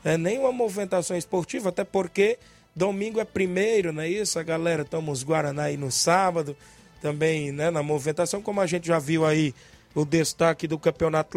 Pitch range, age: 165-195 Hz, 20-39